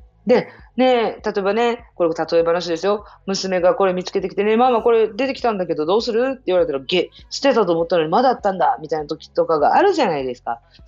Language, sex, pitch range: Japanese, female, 170-285 Hz